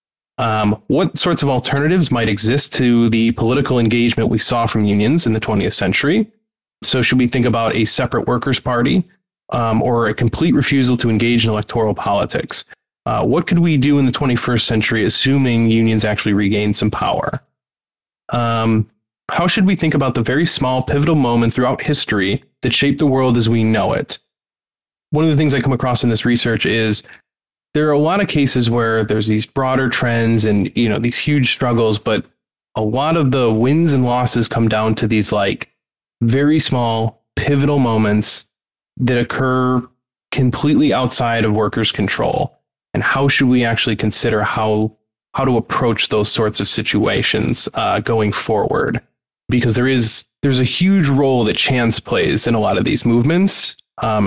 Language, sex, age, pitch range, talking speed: English, male, 20-39, 110-135 Hz, 175 wpm